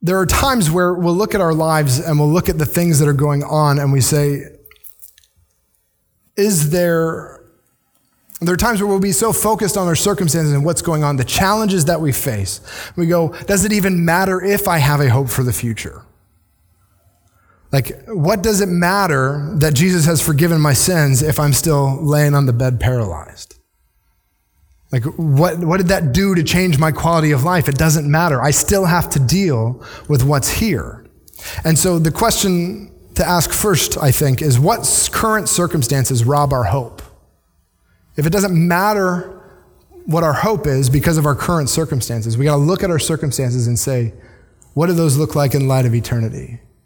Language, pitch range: English, 120-175 Hz